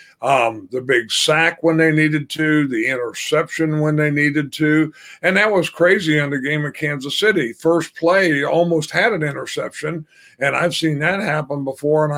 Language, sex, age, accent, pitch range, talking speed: English, male, 50-69, American, 140-165 Hz, 180 wpm